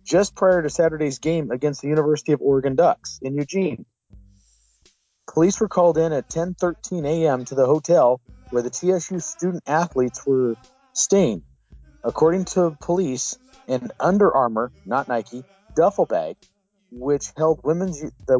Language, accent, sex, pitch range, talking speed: English, American, male, 125-175 Hz, 140 wpm